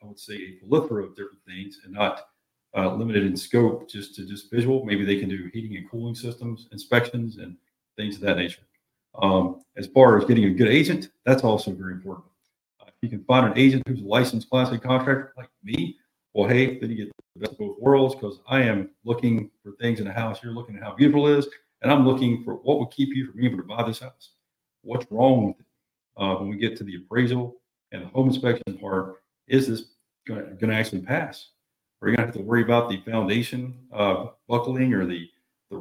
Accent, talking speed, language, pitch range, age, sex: American, 230 wpm, English, 100-130 Hz, 40-59, male